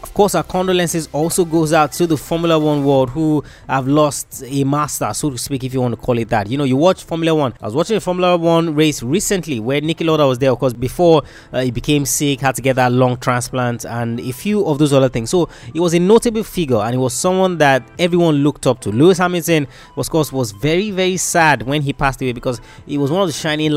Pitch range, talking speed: 125-165 Hz, 255 wpm